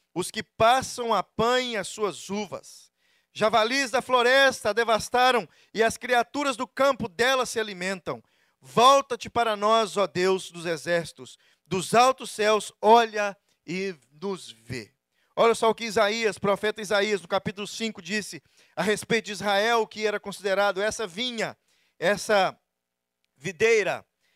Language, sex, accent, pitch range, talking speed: Portuguese, male, Brazilian, 200-255 Hz, 135 wpm